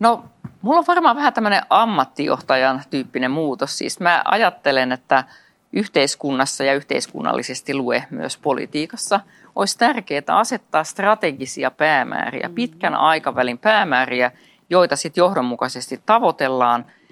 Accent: native